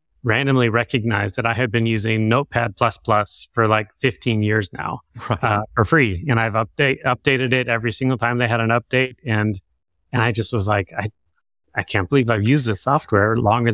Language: English